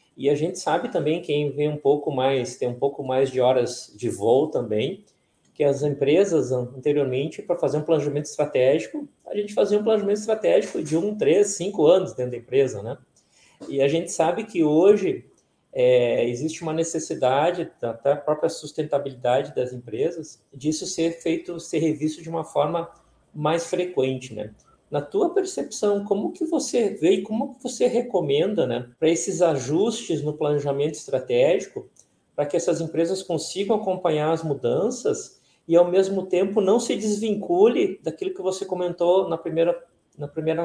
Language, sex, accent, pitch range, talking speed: Portuguese, male, Brazilian, 145-195 Hz, 165 wpm